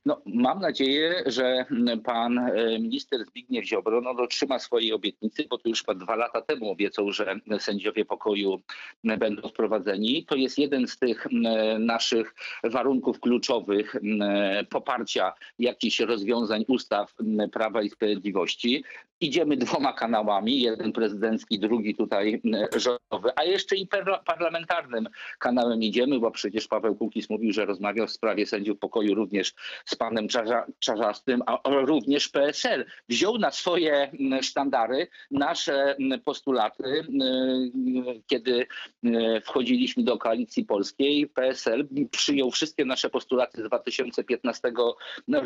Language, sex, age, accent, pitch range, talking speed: Polish, male, 50-69, native, 115-175 Hz, 120 wpm